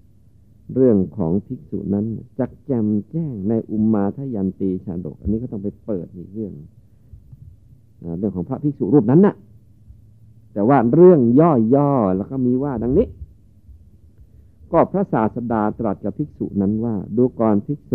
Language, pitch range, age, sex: Thai, 95-120 Hz, 60-79, male